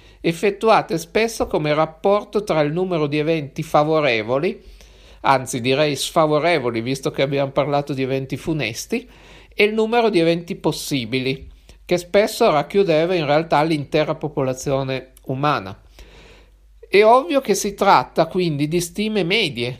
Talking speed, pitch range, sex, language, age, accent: 130 wpm, 145-180 Hz, male, Italian, 50-69, native